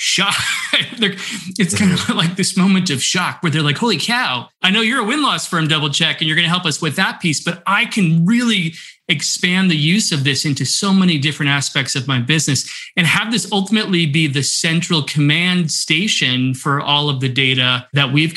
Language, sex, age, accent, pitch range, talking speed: English, male, 30-49, American, 135-175 Hz, 210 wpm